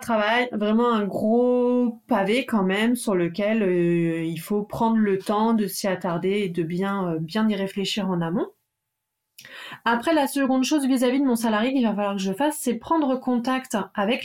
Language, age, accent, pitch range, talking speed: French, 30-49, French, 190-245 Hz, 190 wpm